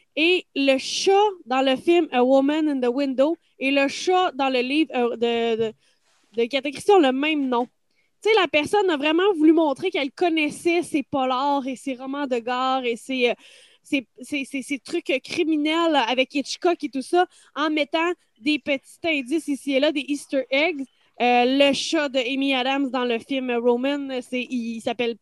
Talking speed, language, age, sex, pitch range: 185 wpm, French, 20-39, female, 260-325 Hz